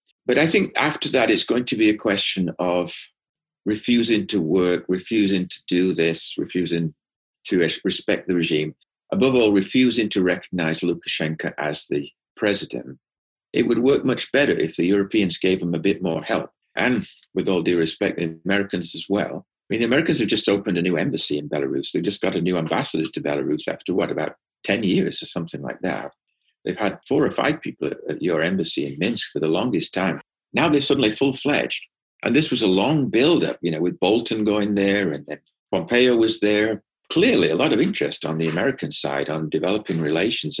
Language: English